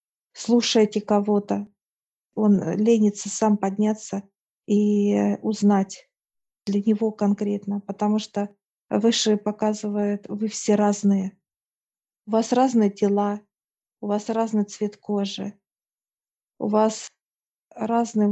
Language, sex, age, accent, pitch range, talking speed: Russian, female, 40-59, native, 200-220 Hz, 100 wpm